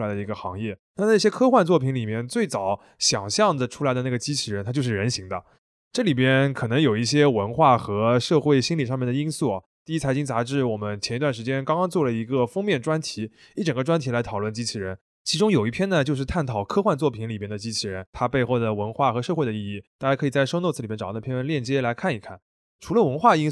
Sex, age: male, 20-39